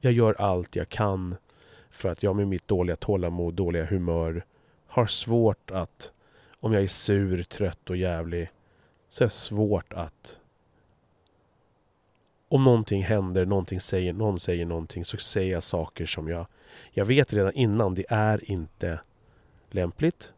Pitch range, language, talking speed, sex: 85-115 Hz, Swedish, 155 wpm, male